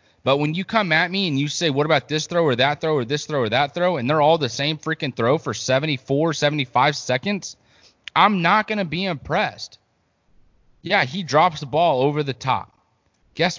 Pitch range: 130-180 Hz